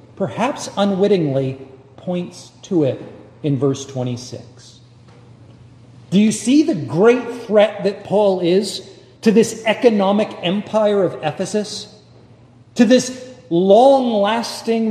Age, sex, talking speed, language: 40-59, male, 105 wpm, English